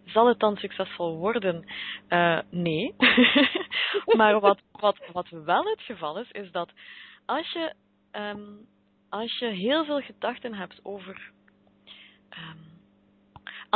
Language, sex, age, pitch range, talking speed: Dutch, female, 20-39, 165-230 Hz, 120 wpm